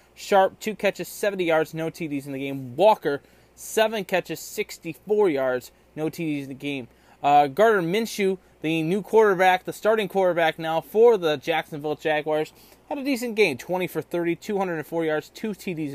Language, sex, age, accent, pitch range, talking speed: English, male, 20-39, American, 150-210 Hz, 170 wpm